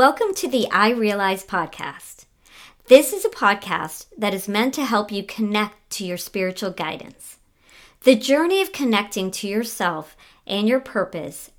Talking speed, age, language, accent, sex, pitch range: 155 wpm, 40-59, English, American, male, 185-250 Hz